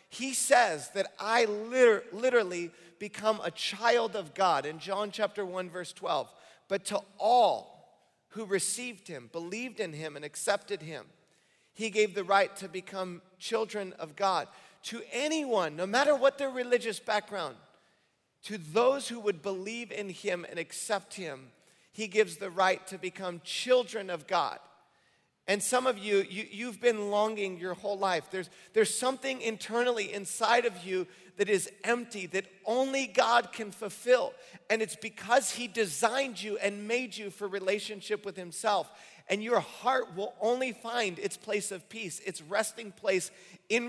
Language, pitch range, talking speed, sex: English, 190-230 Hz, 160 wpm, male